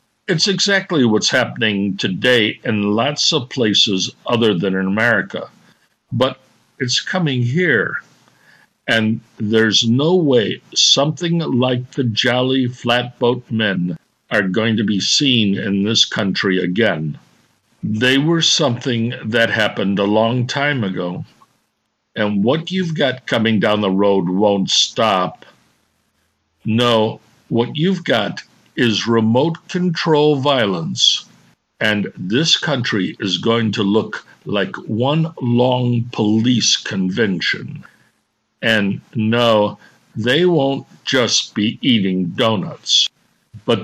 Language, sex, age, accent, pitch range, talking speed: English, male, 60-79, American, 105-135 Hz, 115 wpm